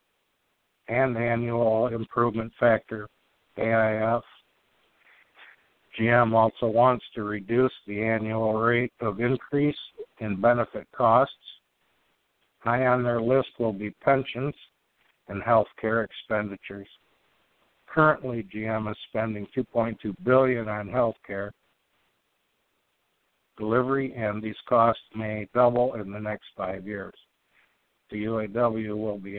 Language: English